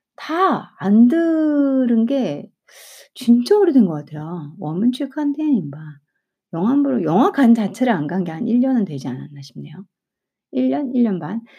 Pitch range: 150-245 Hz